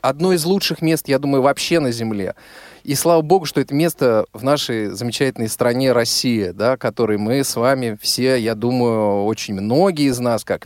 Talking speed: 190 wpm